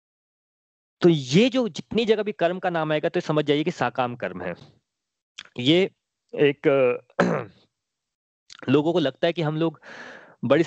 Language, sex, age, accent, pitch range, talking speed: Hindi, male, 20-39, native, 135-170 Hz, 150 wpm